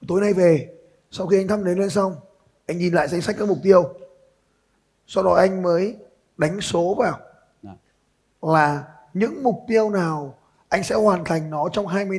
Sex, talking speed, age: male, 180 wpm, 20-39